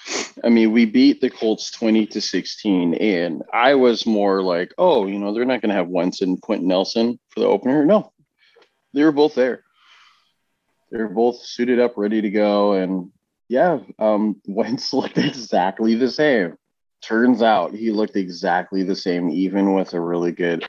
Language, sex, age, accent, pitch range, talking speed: English, male, 30-49, American, 95-115 Hz, 175 wpm